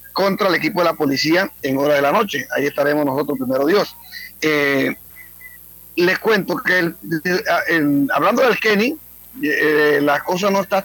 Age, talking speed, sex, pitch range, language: 40-59, 170 wpm, male, 155-195 Hz, Spanish